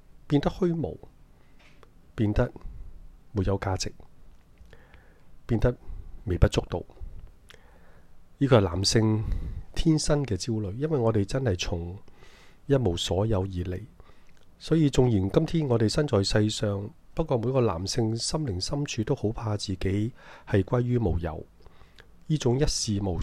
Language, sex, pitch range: Chinese, male, 90-115 Hz